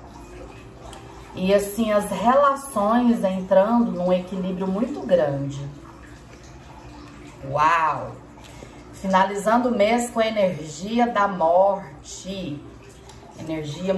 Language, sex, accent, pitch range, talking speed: Portuguese, female, Brazilian, 180-255 Hz, 80 wpm